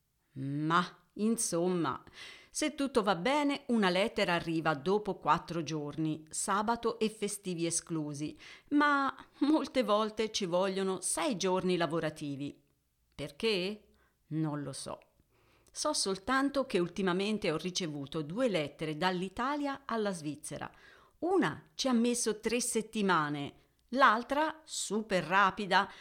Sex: female